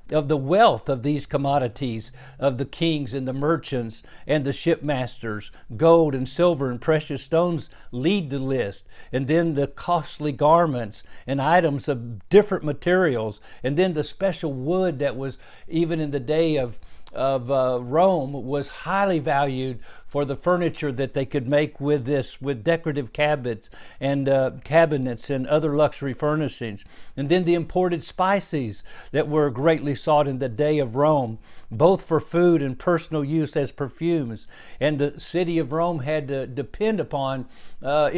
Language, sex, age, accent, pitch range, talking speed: English, male, 50-69, American, 135-160 Hz, 160 wpm